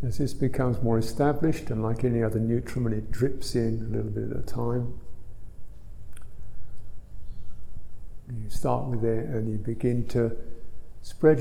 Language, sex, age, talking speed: English, male, 50-69, 145 wpm